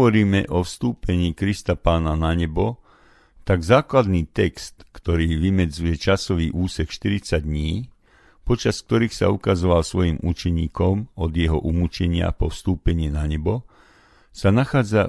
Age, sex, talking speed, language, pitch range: 50-69, male, 125 wpm, Slovak, 80-105 Hz